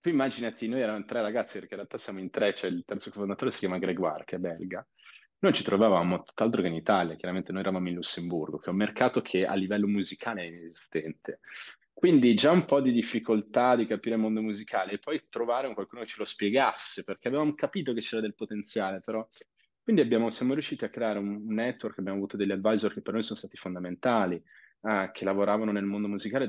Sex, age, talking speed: male, 30-49, 215 wpm